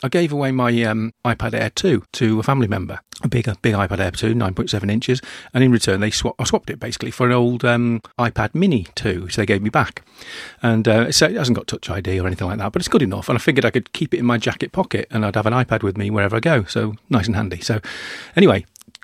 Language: English